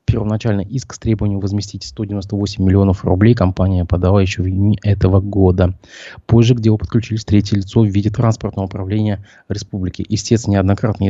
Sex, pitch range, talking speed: male, 95-110 Hz, 155 wpm